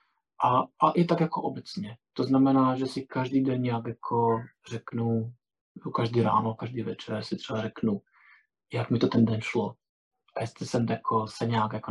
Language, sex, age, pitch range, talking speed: Czech, male, 20-39, 115-140 Hz, 175 wpm